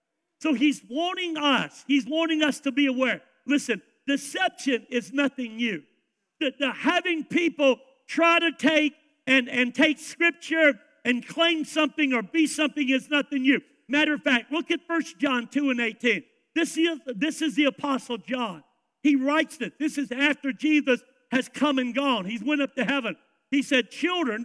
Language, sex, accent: English, male, American